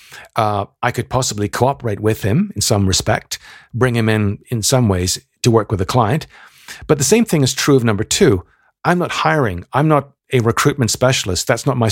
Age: 50-69